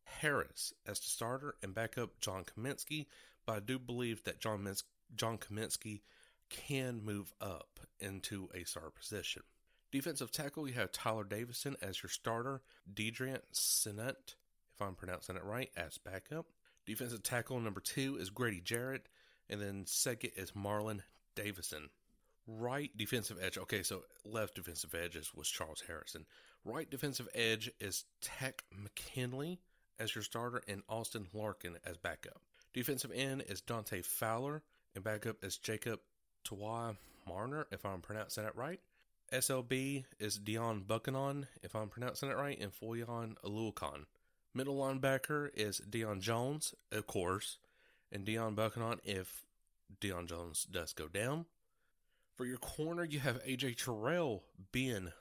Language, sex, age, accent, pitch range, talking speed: English, male, 40-59, American, 100-130 Hz, 140 wpm